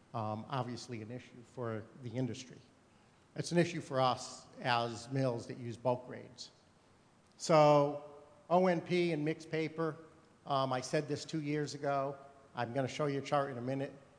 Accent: American